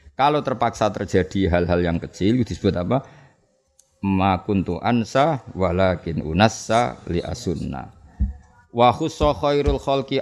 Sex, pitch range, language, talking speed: male, 95-125 Hz, Indonesian, 100 wpm